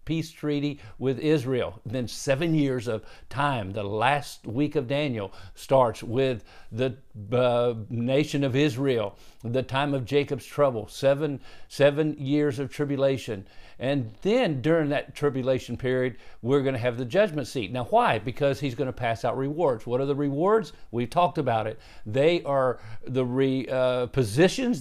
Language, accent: English, American